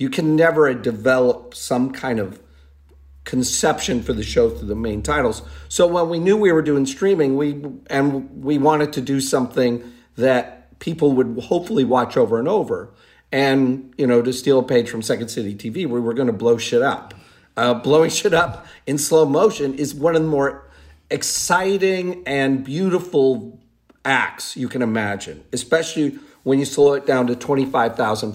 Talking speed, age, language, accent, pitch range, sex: 175 wpm, 40-59, English, American, 115-155 Hz, male